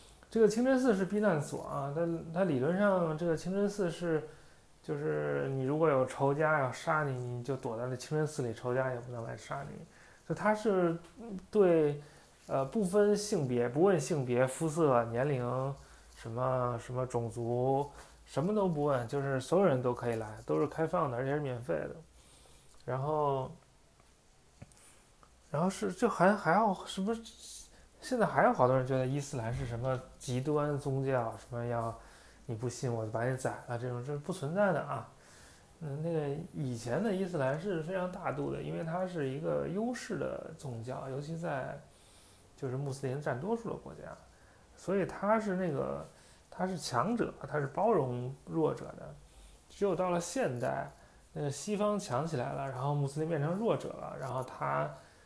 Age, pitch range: 20-39, 125-180 Hz